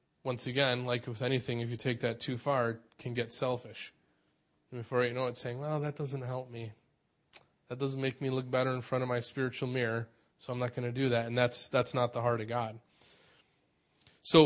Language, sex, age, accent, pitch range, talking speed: English, male, 20-39, American, 120-145 Hz, 225 wpm